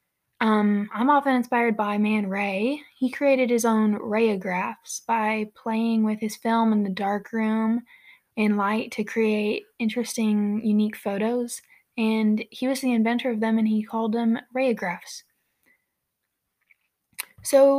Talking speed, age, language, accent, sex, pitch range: 140 wpm, 20-39, English, American, female, 215-240 Hz